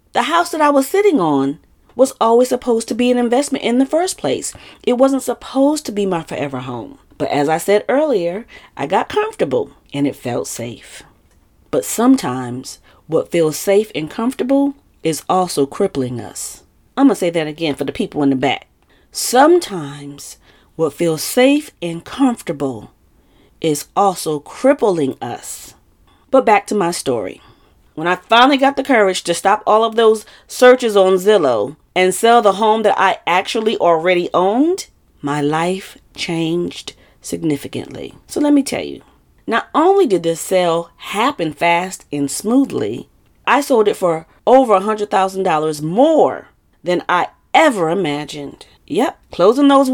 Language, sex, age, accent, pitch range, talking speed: English, female, 40-59, American, 155-250 Hz, 155 wpm